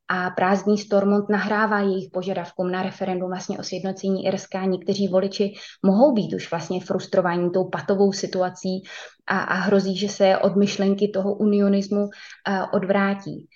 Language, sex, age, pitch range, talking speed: Czech, female, 20-39, 185-215 Hz, 145 wpm